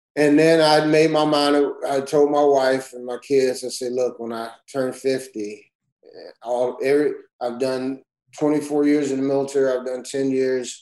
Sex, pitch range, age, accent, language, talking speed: male, 120-145 Hz, 30-49, American, English, 185 wpm